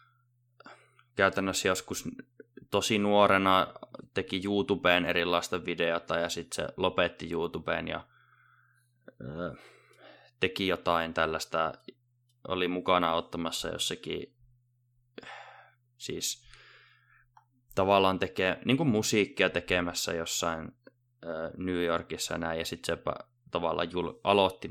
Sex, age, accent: male, 20-39, native